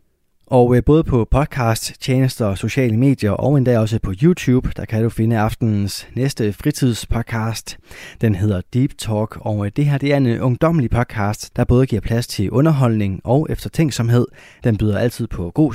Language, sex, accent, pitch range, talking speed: Danish, male, native, 105-135 Hz, 170 wpm